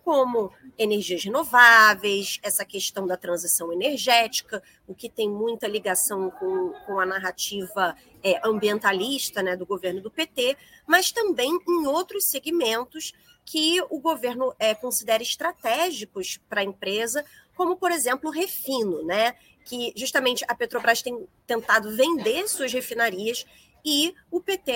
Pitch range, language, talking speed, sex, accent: 210-295 Hz, Portuguese, 130 wpm, female, Brazilian